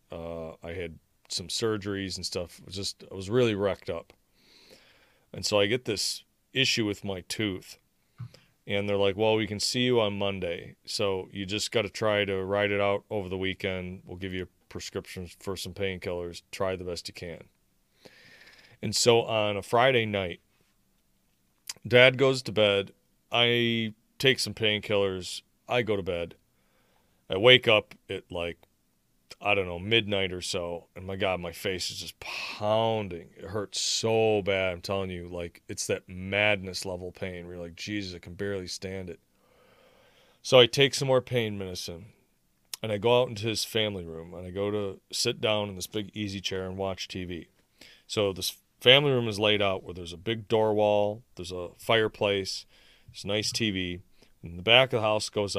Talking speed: 185 wpm